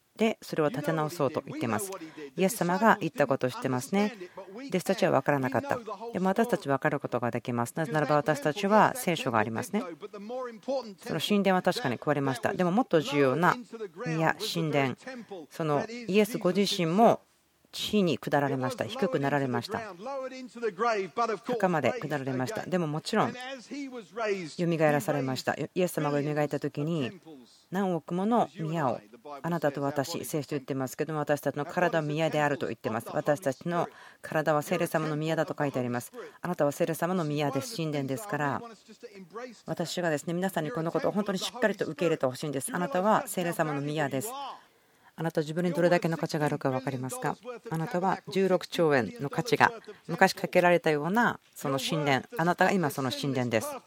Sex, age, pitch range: female, 40-59, 145-195 Hz